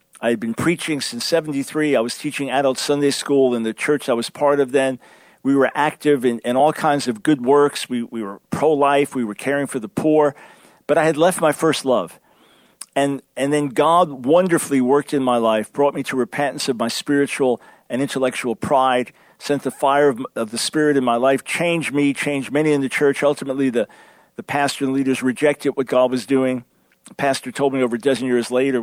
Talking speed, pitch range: 210 wpm, 125-145 Hz